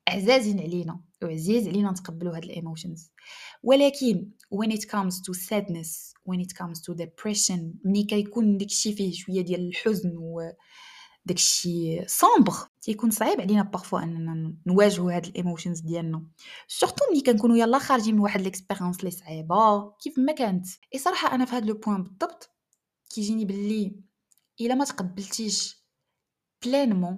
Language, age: Arabic, 20-39